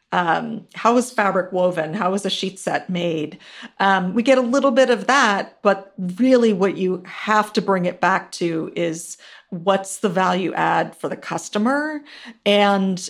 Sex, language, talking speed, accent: female, English, 175 wpm, American